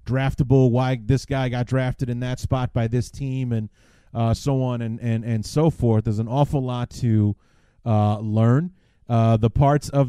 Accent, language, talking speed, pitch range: American, English, 190 wpm, 115-135 Hz